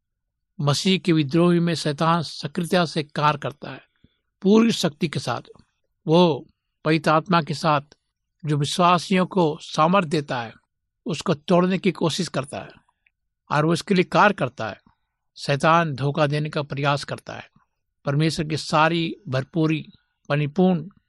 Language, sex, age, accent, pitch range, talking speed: Hindi, male, 60-79, native, 145-175 Hz, 135 wpm